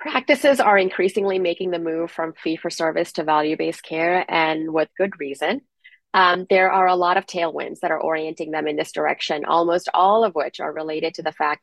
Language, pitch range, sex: English, 165-195 Hz, female